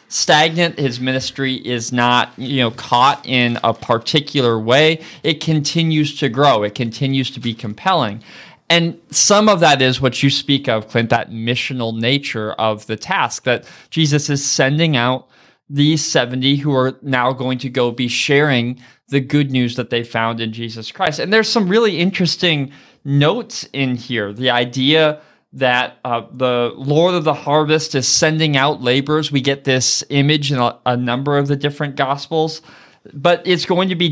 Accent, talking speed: American, 175 wpm